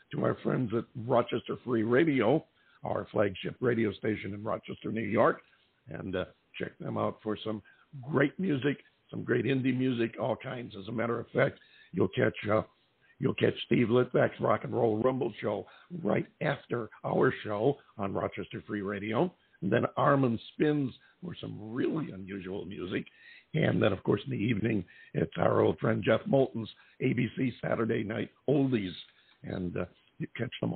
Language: English